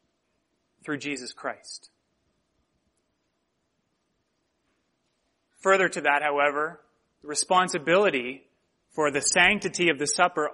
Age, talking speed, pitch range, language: 30-49, 85 wpm, 170-225 Hz, English